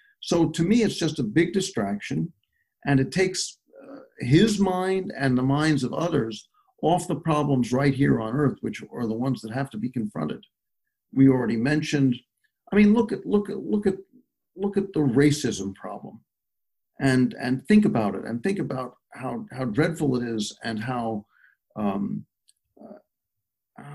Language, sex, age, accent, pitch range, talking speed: English, male, 50-69, American, 125-190 Hz, 170 wpm